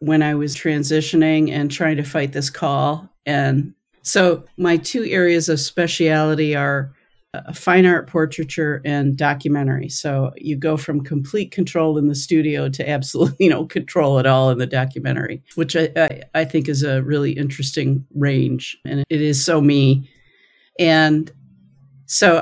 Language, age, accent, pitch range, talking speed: English, 50-69, American, 135-155 Hz, 155 wpm